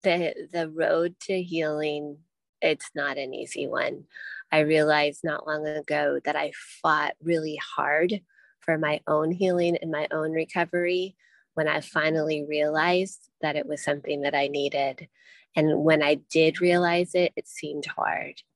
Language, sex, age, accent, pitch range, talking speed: English, female, 20-39, American, 150-175 Hz, 155 wpm